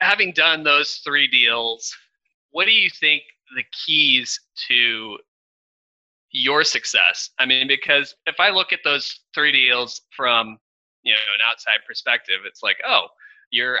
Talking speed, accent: 150 wpm, American